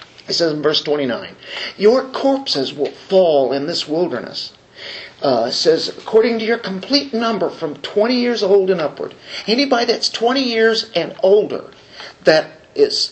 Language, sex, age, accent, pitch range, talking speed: English, male, 50-69, American, 160-225 Hz, 155 wpm